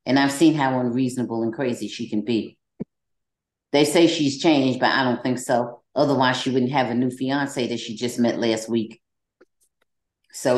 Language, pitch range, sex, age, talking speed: English, 125-180 Hz, female, 40-59, 185 wpm